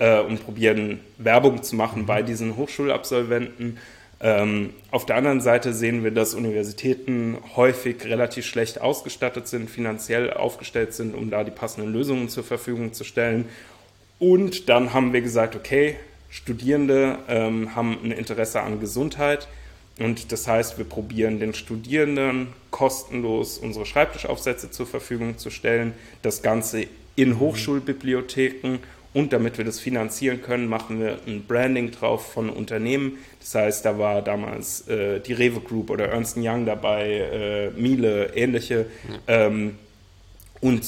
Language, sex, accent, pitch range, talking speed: German, male, German, 110-130 Hz, 140 wpm